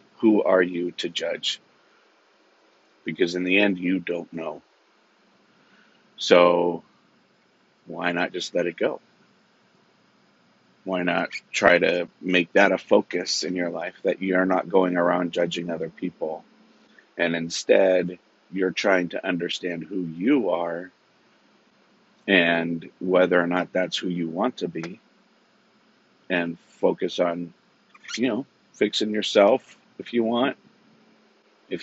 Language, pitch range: English, 90-100 Hz